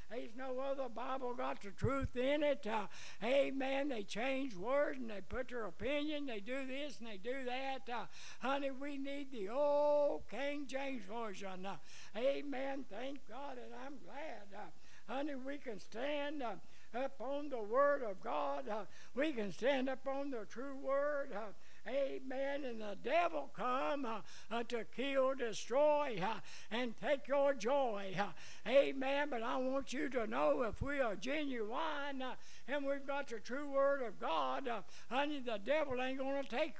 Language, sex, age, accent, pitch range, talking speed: English, male, 60-79, American, 235-280 Hz, 170 wpm